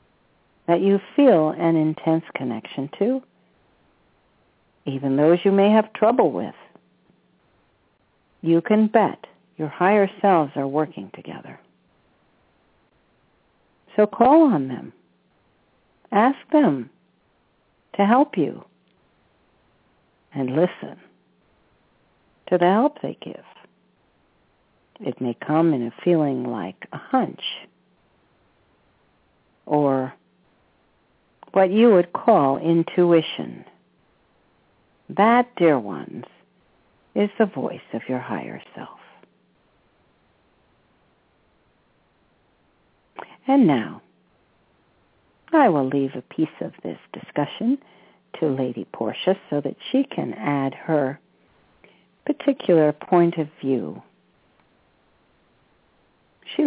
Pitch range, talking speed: 140-215 Hz, 95 wpm